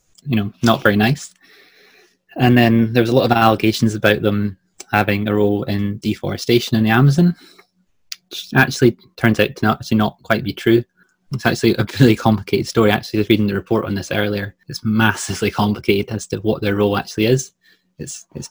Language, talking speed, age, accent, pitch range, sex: English, 200 wpm, 20-39, British, 105-120 Hz, male